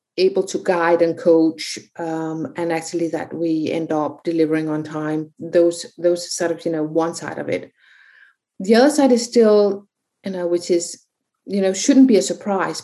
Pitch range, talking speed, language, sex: 160-195 Hz, 185 wpm, English, female